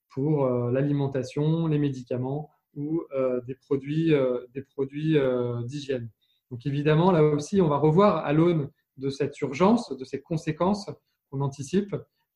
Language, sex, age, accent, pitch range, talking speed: French, male, 20-39, French, 130-155 Hz, 130 wpm